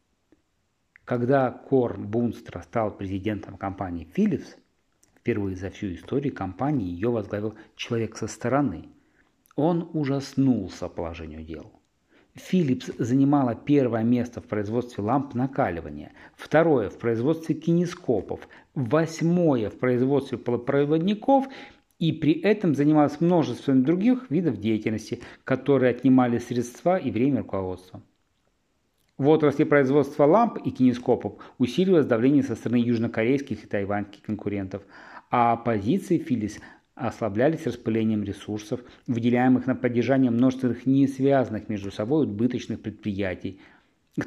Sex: male